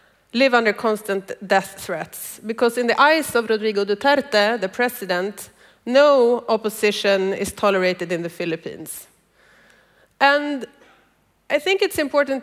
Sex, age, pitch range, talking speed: female, 30-49, 205-260 Hz, 125 wpm